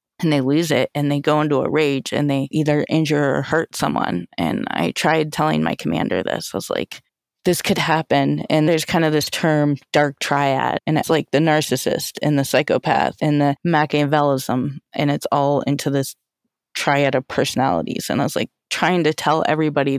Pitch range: 145-165 Hz